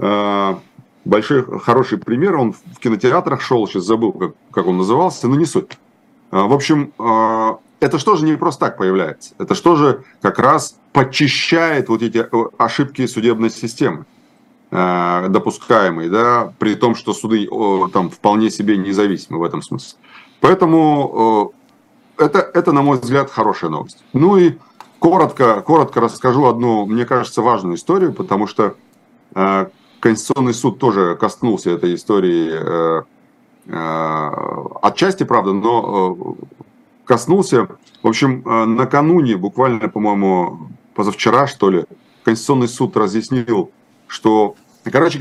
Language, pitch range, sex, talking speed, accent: Russian, 105-145 Hz, male, 125 wpm, native